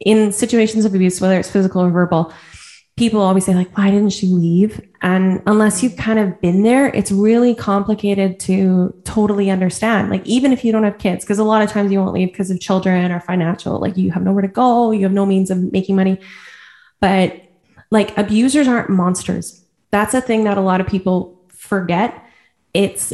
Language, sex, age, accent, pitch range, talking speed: English, female, 10-29, American, 185-215 Hz, 200 wpm